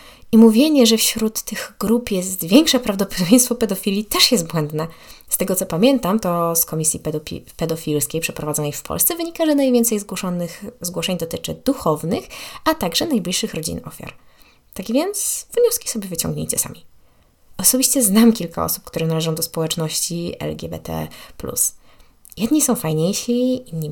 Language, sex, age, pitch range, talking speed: Polish, female, 20-39, 160-230 Hz, 140 wpm